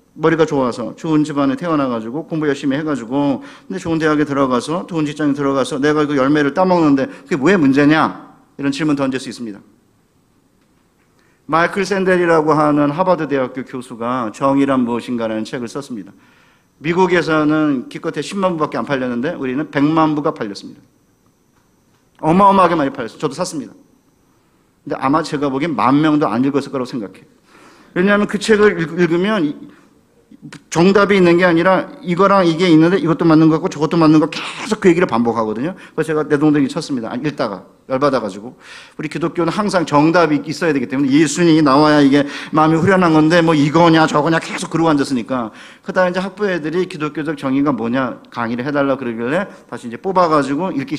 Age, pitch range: 40-59, 140-180 Hz